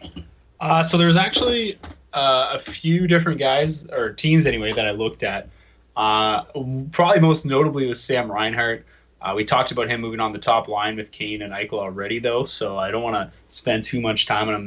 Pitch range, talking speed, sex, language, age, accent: 105-135 Hz, 200 wpm, male, English, 20-39, American